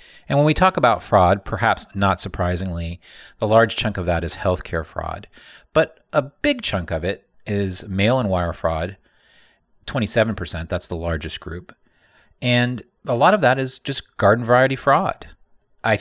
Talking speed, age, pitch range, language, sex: 165 wpm, 30-49, 90-125 Hz, English, male